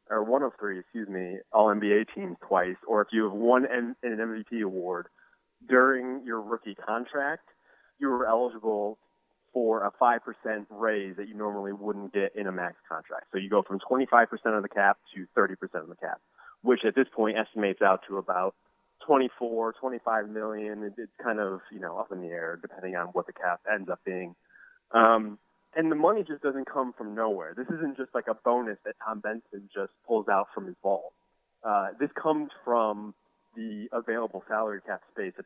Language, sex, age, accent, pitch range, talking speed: English, male, 30-49, American, 105-130 Hz, 200 wpm